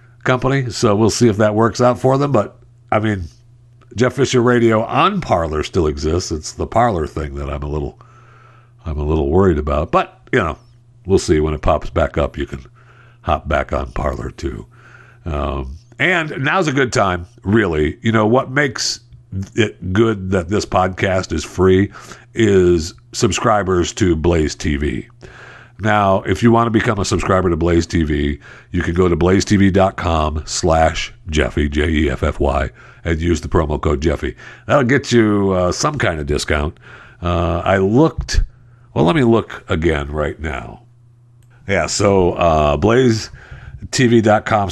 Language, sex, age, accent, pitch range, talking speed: English, male, 60-79, American, 80-120 Hz, 160 wpm